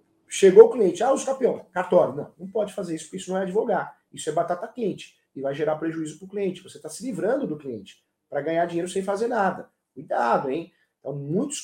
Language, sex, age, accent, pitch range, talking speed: Portuguese, male, 40-59, Brazilian, 150-200 Hz, 230 wpm